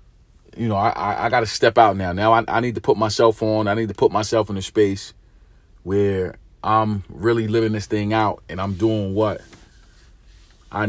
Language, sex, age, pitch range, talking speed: English, male, 40-59, 105-135 Hz, 205 wpm